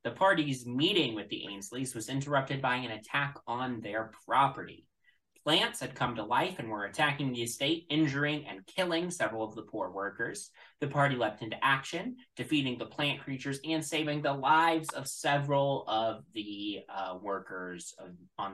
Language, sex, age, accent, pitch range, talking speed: English, male, 20-39, American, 120-155 Hz, 170 wpm